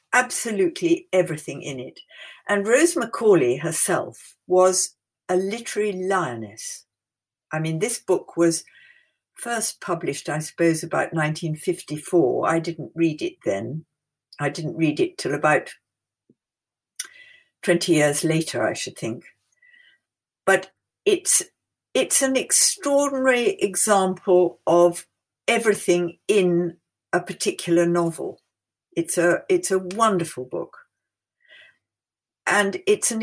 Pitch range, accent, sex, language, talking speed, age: 165-245 Hz, British, female, English, 110 wpm, 60-79